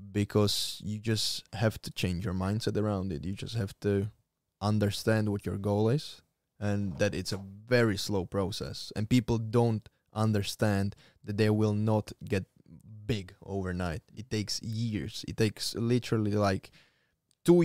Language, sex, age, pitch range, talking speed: Slovak, male, 10-29, 100-115 Hz, 155 wpm